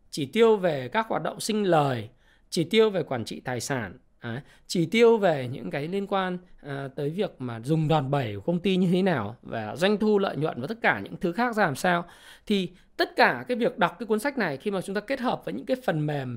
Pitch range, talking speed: 135-200 Hz, 255 wpm